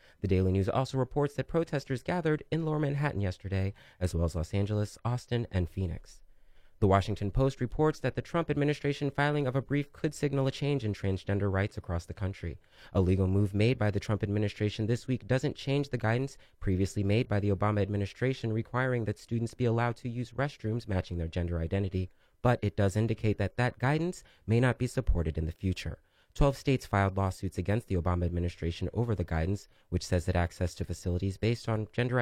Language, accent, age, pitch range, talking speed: English, American, 30-49, 95-130 Hz, 200 wpm